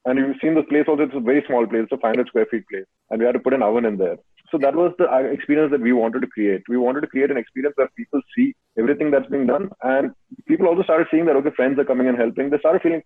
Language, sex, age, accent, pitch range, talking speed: English, male, 30-49, Indian, 115-145 Hz, 295 wpm